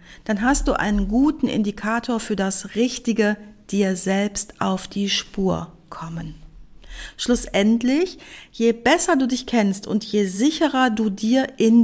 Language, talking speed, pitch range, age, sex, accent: German, 110 wpm, 195-250 Hz, 50-69, female, German